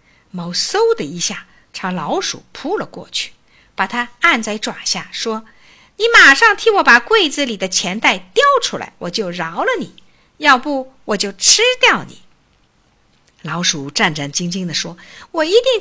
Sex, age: female, 50-69